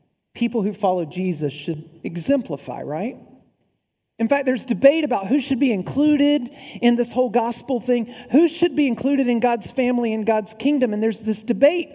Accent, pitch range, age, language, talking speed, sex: American, 220-330 Hz, 40-59, English, 175 wpm, male